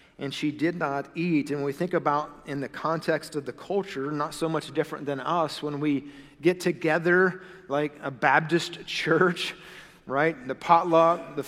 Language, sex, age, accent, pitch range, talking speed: English, male, 40-59, American, 140-165 Hz, 175 wpm